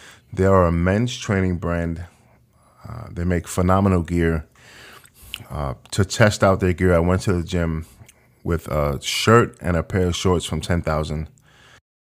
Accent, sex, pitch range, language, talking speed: American, male, 80-95 Hz, English, 160 wpm